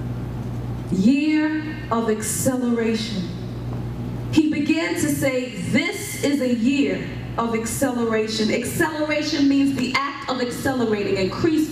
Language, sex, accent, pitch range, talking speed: English, female, American, 195-275 Hz, 100 wpm